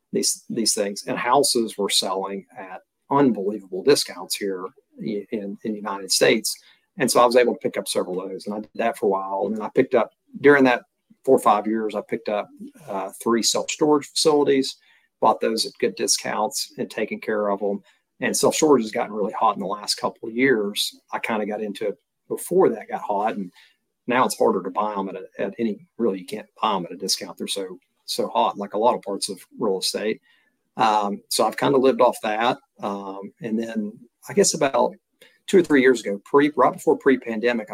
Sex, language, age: male, English, 40-59